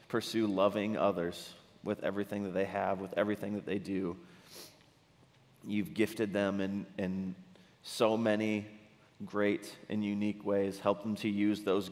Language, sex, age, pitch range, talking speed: English, male, 30-49, 95-115 Hz, 145 wpm